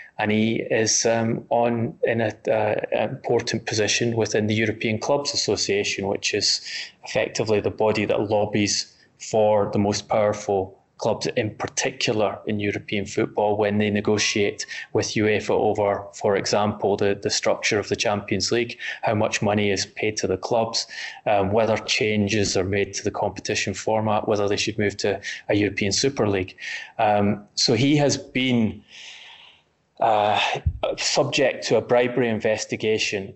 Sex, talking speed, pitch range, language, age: male, 150 wpm, 105-115 Hz, English, 20-39